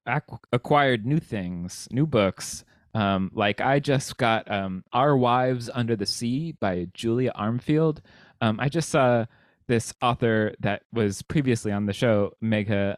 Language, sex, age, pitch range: English, male, 20-39, 100-125 Hz